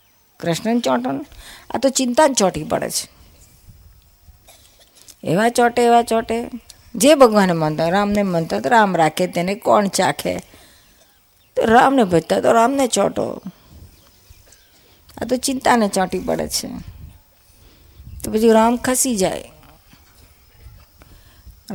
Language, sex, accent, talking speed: Gujarati, female, native, 70 wpm